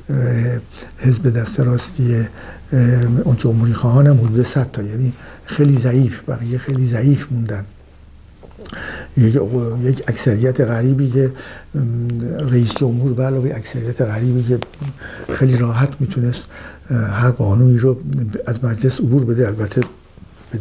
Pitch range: 115-135 Hz